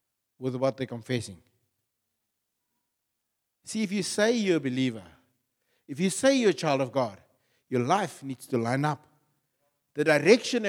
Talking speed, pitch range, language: 150 wpm, 115-165 Hz, English